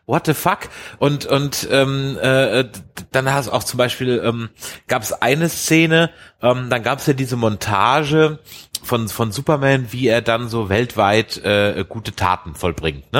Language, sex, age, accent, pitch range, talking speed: German, male, 30-49, German, 110-150 Hz, 170 wpm